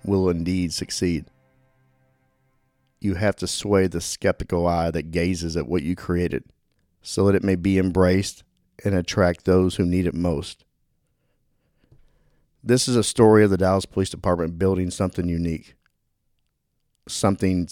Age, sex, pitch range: 50-69, male, 90-100 Hz